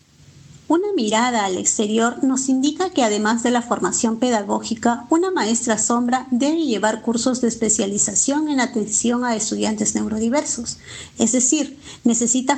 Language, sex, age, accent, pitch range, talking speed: Spanish, female, 40-59, American, 220-260 Hz, 135 wpm